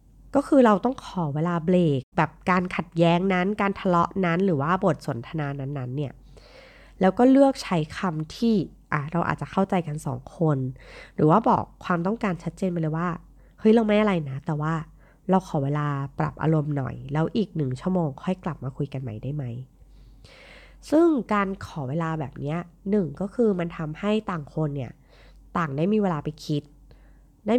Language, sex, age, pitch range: Thai, female, 20-39, 150-220 Hz